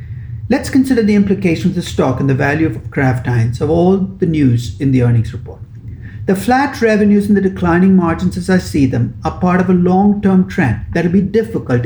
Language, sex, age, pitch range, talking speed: English, male, 60-79, 120-190 Hz, 215 wpm